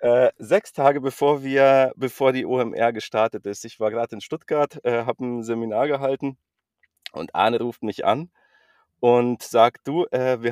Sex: male